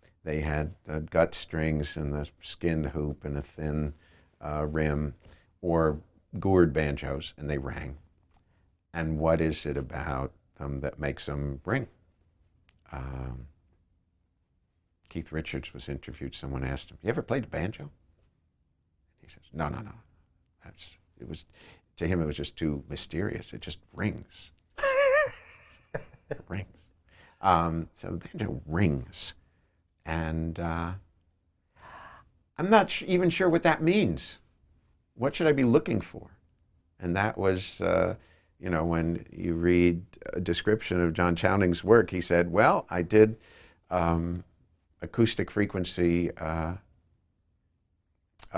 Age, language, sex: 60-79, English, male